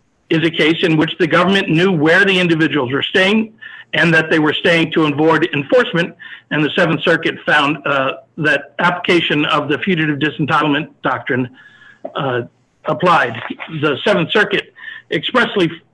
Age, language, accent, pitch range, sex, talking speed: 60-79, English, American, 150-185 Hz, male, 150 wpm